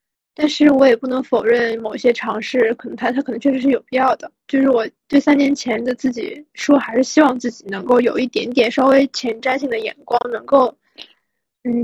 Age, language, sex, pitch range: 20-39, Chinese, female, 235-275 Hz